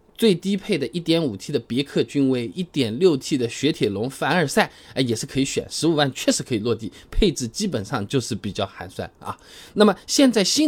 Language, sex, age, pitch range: Chinese, male, 20-39, 125-185 Hz